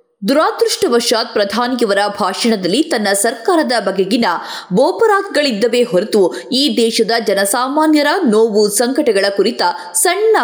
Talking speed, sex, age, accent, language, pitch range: 85 wpm, female, 20-39, native, Kannada, 215-315 Hz